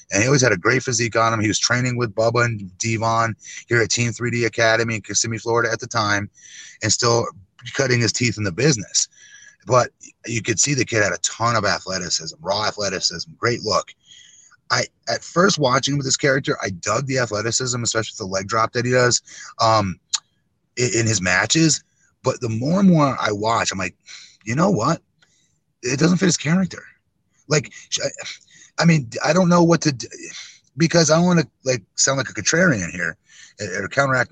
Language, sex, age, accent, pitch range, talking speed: English, male, 30-49, American, 110-145 Hz, 200 wpm